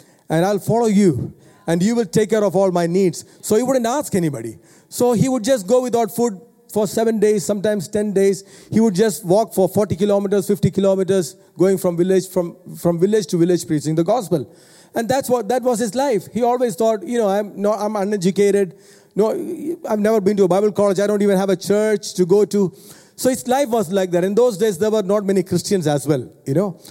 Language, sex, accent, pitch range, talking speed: English, male, Indian, 165-205 Hz, 225 wpm